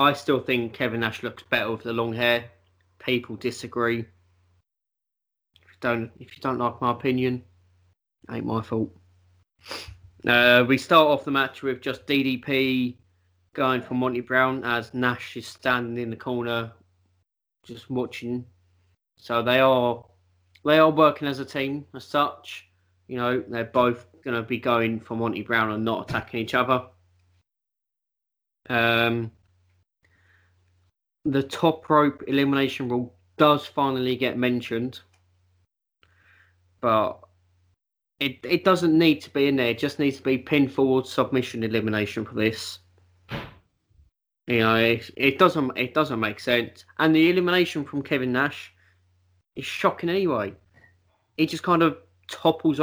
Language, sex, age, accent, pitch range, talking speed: English, male, 20-39, British, 95-135 Hz, 145 wpm